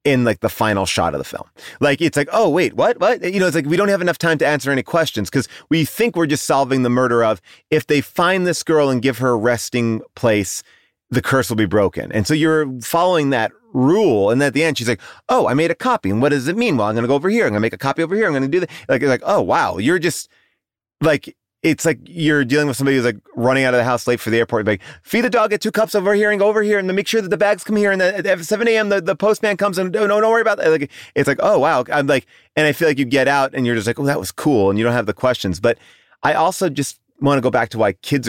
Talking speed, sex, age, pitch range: 305 wpm, male, 30-49, 115-165 Hz